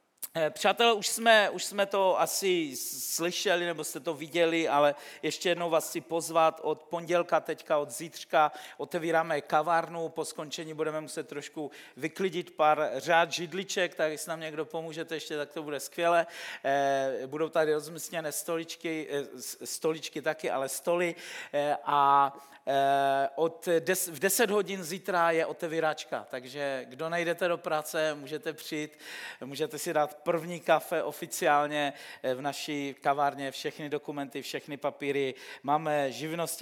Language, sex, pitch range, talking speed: Czech, male, 145-175 Hz, 135 wpm